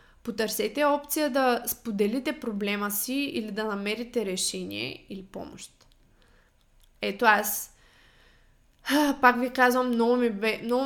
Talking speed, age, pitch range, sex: 100 wpm, 20-39, 205-250 Hz, female